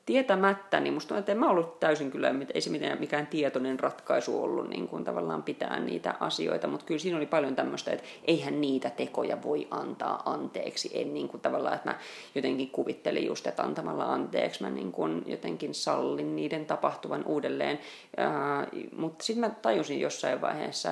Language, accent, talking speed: Finnish, native, 170 wpm